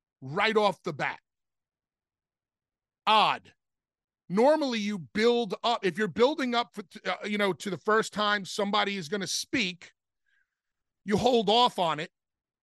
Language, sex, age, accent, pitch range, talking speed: English, male, 40-59, American, 180-230 Hz, 145 wpm